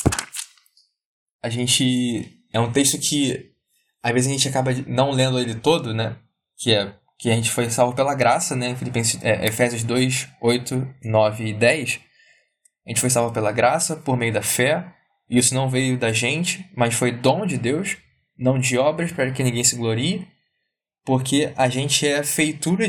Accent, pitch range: Brazilian, 120-155 Hz